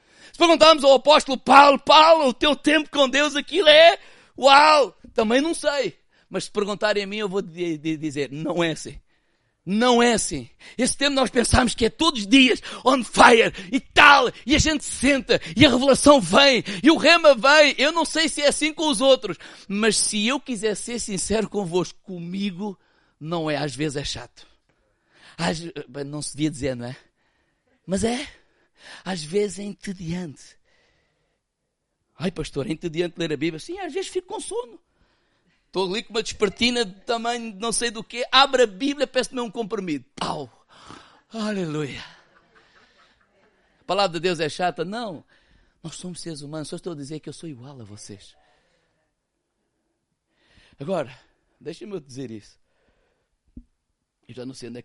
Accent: Brazilian